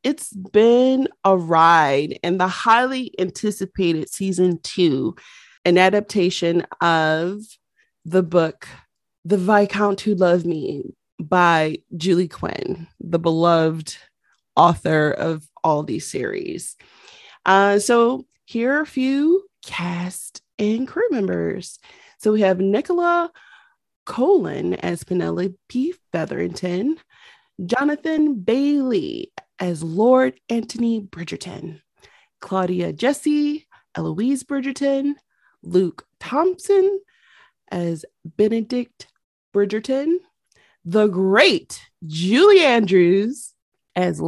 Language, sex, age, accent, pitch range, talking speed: English, female, 30-49, American, 180-295 Hz, 90 wpm